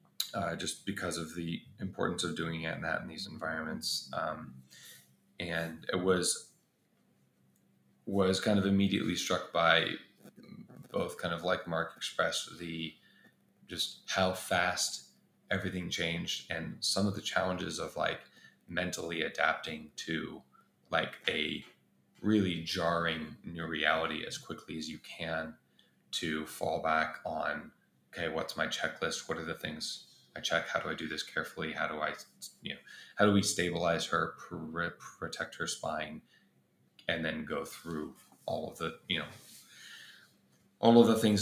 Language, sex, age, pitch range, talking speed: English, male, 20-39, 80-95 Hz, 150 wpm